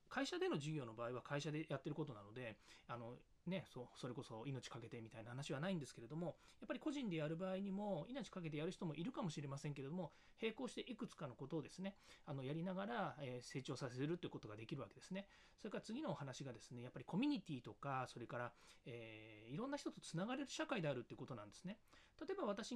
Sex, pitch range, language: male, 130-190 Hz, Japanese